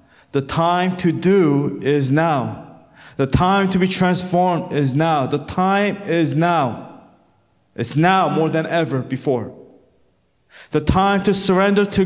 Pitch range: 165-205 Hz